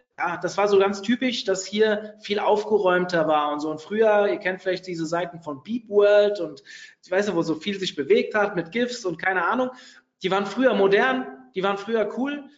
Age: 30-49